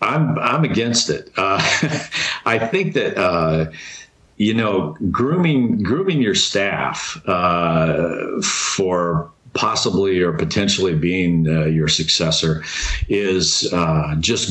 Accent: American